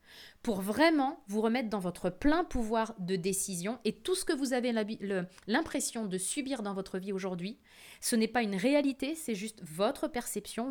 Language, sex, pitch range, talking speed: French, female, 190-230 Hz, 185 wpm